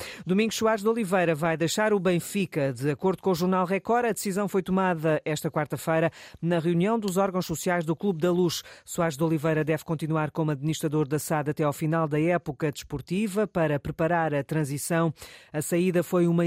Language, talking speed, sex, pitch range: Portuguese, 190 wpm, female, 145-170 Hz